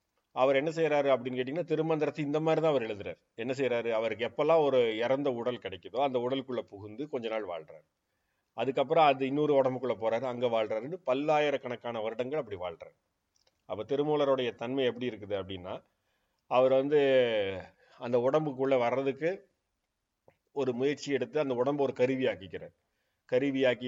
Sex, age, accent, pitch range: male, 40-59, native, 120-140 Hz